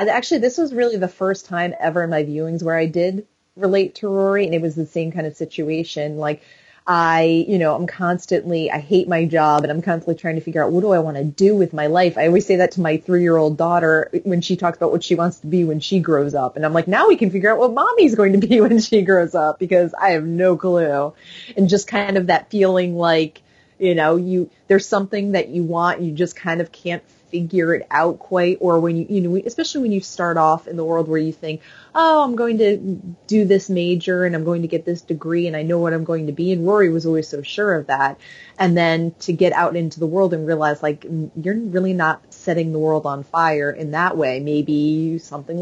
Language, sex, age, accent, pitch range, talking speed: English, female, 30-49, American, 155-190 Hz, 245 wpm